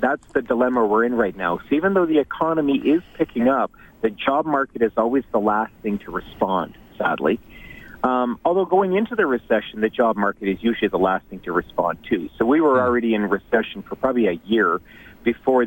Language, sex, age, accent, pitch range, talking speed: English, male, 40-59, American, 105-130 Hz, 205 wpm